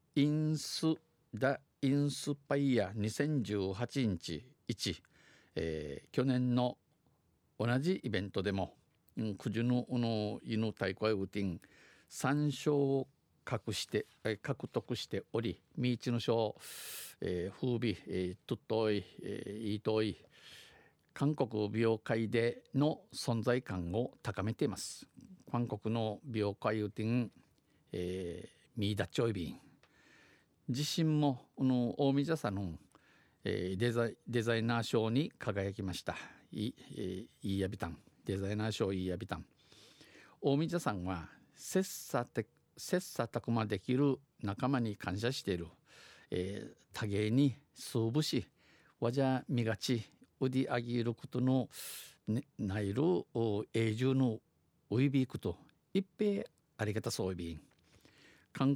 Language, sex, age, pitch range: Japanese, male, 50-69, 105-135 Hz